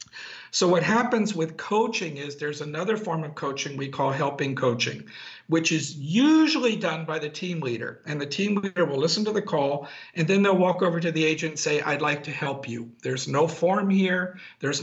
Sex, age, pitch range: male, 50-69, 140-180 Hz